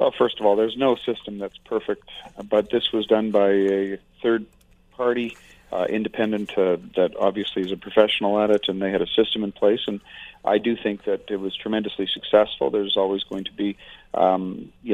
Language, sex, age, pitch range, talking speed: English, male, 40-59, 95-110 Hz, 200 wpm